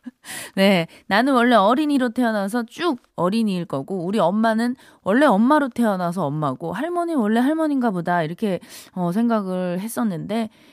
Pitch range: 185-245 Hz